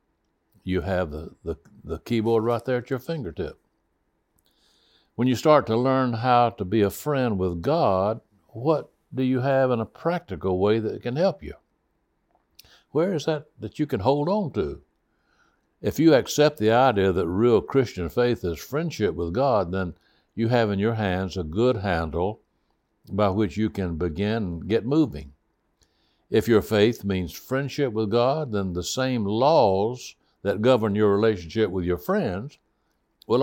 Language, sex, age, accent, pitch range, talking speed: English, male, 60-79, American, 95-130 Hz, 165 wpm